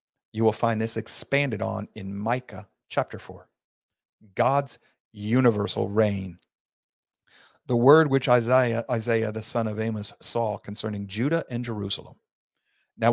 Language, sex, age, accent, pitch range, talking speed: English, male, 40-59, American, 105-120 Hz, 130 wpm